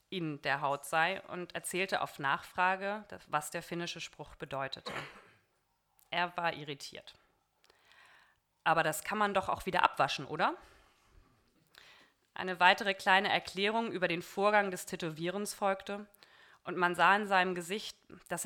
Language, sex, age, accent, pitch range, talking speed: English, female, 30-49, German, 165-200 Hz, 135 wpm